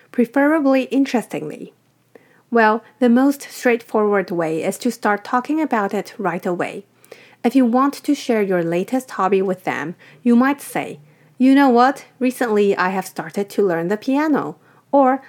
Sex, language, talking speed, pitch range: female, English, 155 wpm, 180-250 Hz